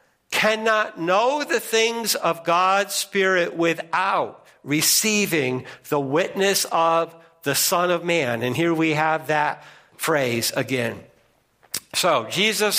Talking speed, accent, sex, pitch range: 115 wpm, American, male, 140-190 Hz